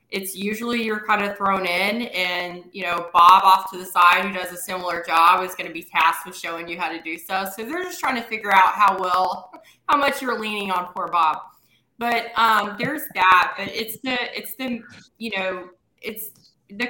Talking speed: 215 wpm